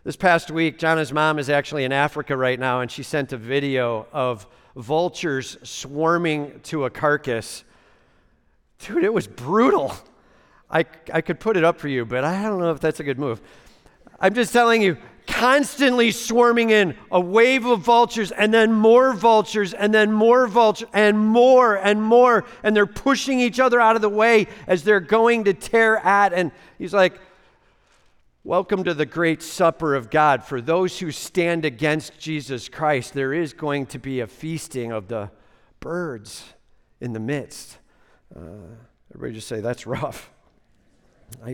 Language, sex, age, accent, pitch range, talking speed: English, male, 50-69, American, 135-210 Hz, 170 wpm